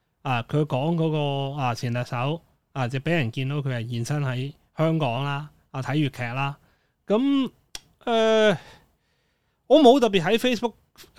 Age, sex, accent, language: 20-39, male, native, Chinese